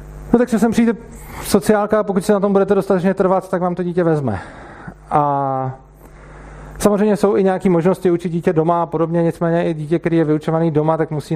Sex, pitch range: male, 145-180 Hz